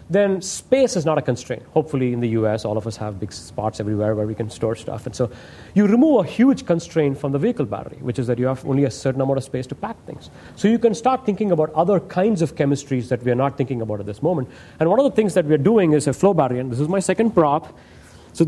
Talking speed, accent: 280 wpm, Indian